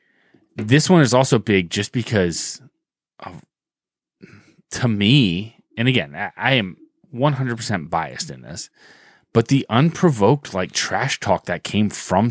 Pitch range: 100-135 Hz